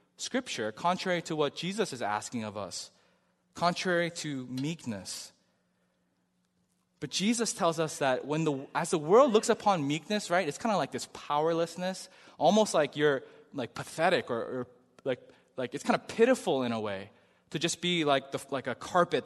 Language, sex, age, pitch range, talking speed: English, male, 20-39, 135-180 Hz, 175 wpm